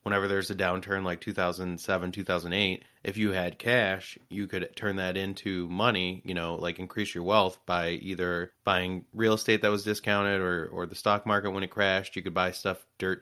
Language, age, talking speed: English, 30-49, 200 wpm